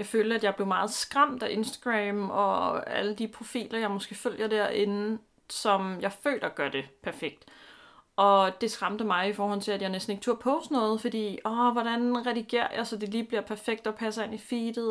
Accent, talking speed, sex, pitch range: native, 210 wpm, female, 190-230 Hz